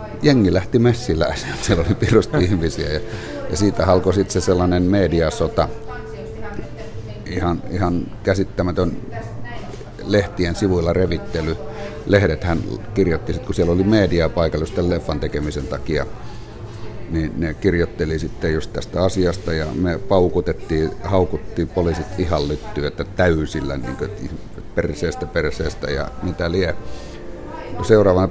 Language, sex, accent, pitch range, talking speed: Finnish, male, native, 80-100 Hz, 110 wpm